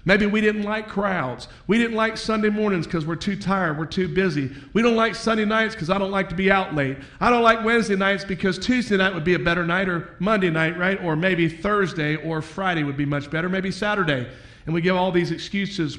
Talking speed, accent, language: 240 wpm, American, English